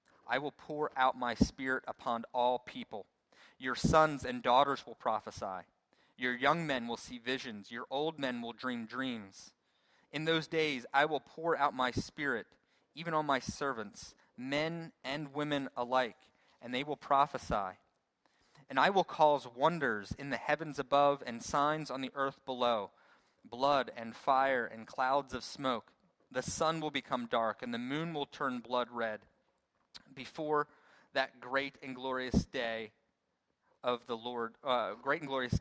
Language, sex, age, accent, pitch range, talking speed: English, male, 30-49, American, 125-150 Hz, 160 wpm